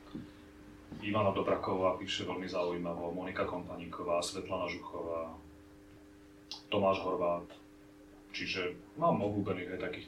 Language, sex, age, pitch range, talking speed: Slovak, male, 30-49, 95-110 Hz, 100 wpm